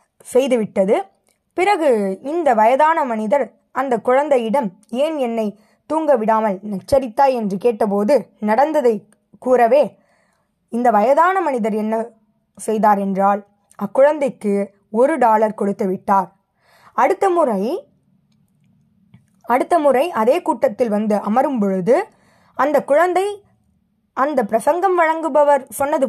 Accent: native